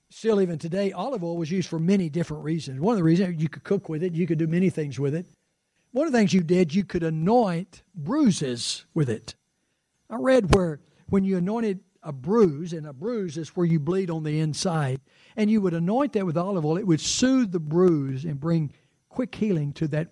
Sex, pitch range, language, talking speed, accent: male, 160-205 Hz, English, 225 wpm, American